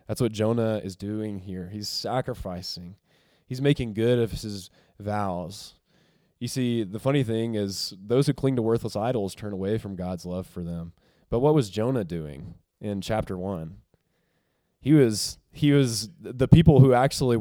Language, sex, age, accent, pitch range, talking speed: English, male, 20-39, American, 90-115 Hz, 170 wpm